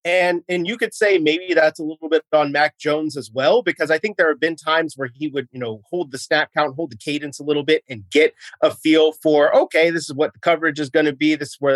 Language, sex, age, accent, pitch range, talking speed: English, male, 30-49, American, 150-180 Hz, 280 wpm